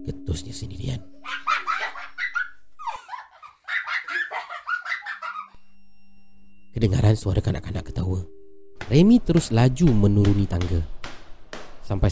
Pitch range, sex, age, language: 95-115 Hz, male, 30-49, Malay